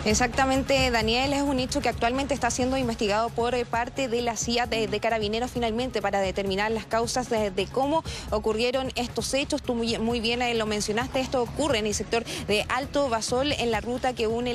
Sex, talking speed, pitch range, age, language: female, 200 wpm, 220-260 Hz, 20-39, Spanish